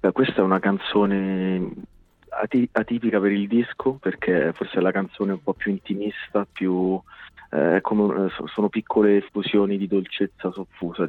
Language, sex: Italian, male